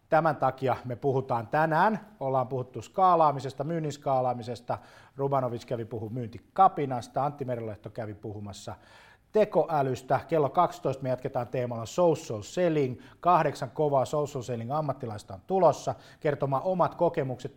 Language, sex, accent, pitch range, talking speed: Finnish, male, native, 120-155 Hz, 125 wpm